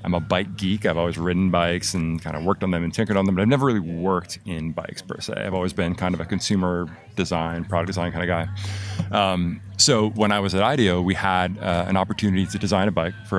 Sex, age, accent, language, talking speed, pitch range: male, 30-49, American, English, 255 wpm, 90-105 Hz